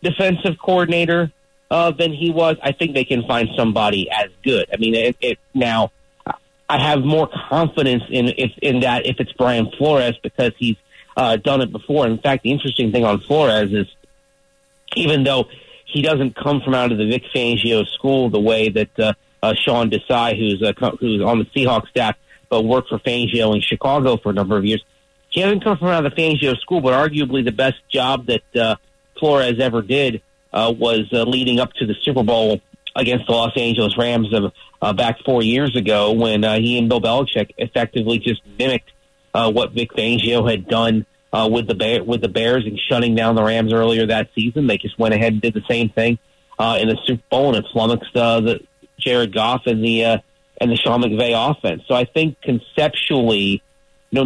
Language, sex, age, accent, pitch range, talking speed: English, male, 40-59, American, 115-135 Hz, 205 wpm